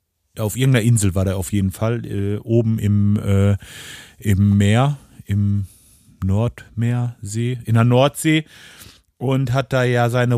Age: 40-59